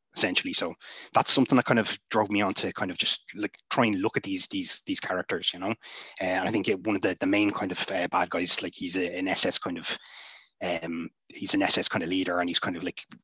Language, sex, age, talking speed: English, male, 20-39, 270 wpm